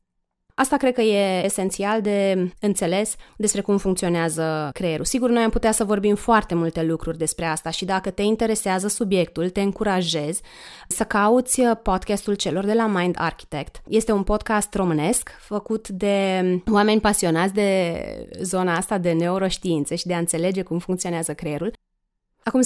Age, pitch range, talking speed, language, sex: 20-39, 180-220 Hz, 155 wpm, Romanian, female